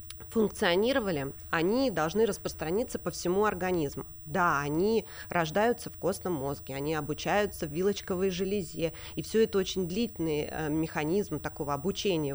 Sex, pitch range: female, 155-205 Hz